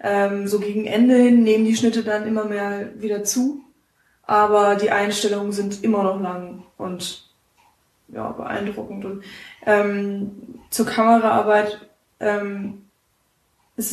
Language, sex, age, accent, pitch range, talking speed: German, female, 20-39, German, 210-230 Hz, 125 wpm